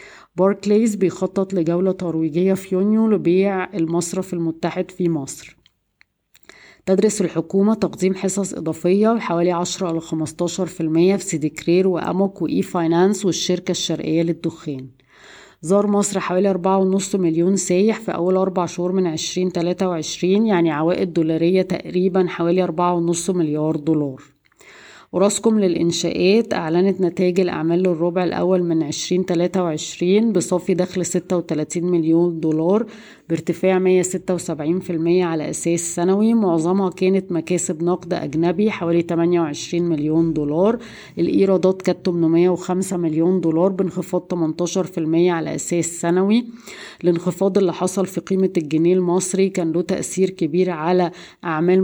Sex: female